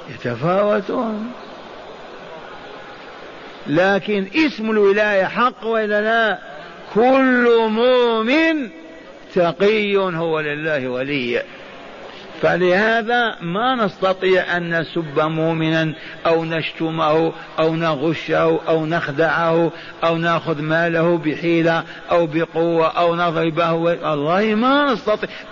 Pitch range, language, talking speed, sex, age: 165-225 Hz, Arabic, 80 wpm, male, 50-69